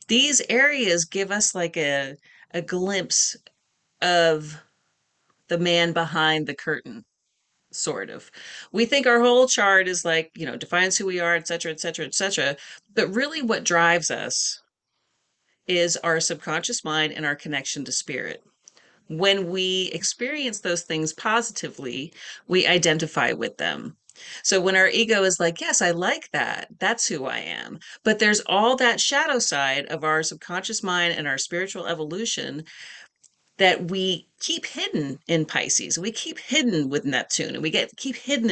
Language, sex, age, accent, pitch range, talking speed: English, female, 30-49, American, 160-230 Hz, 160 wpm